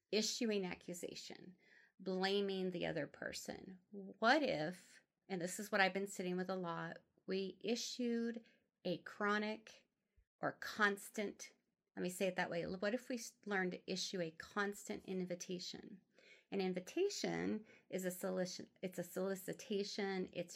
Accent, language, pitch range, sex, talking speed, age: American, English, 175-215 Hz, female, 135 wpm, 30-49